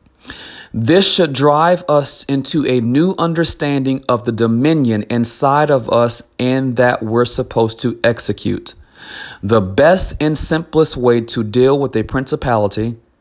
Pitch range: 110-135 Hz